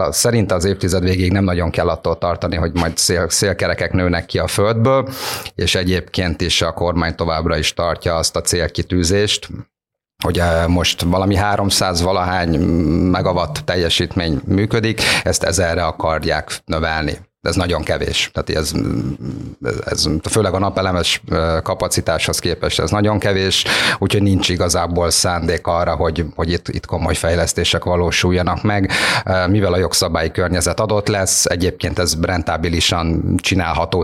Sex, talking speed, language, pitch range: male, 135 wpm, Hungarian, 85-95 Hz